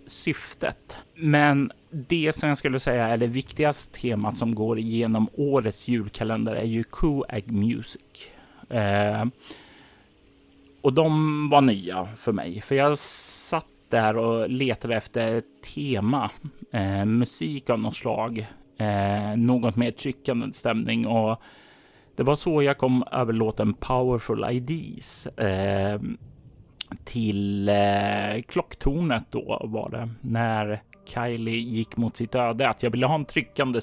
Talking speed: 130 wpm